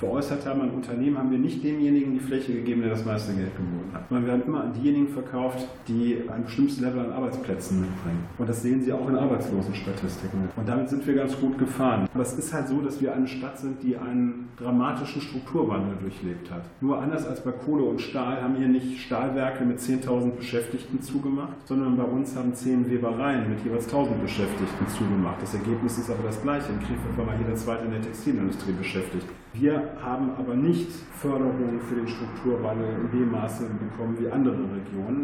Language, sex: German, male